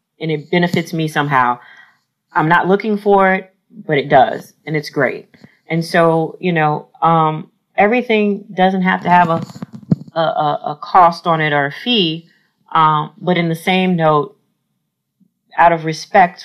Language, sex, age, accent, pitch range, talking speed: English, female, 40-59, American, 160-195 Hz, 160 wpm